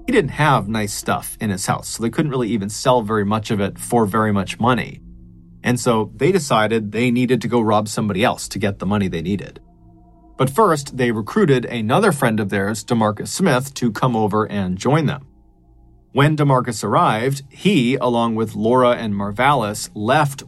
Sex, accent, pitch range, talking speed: male, American, 105-130 Hz, 190 wpm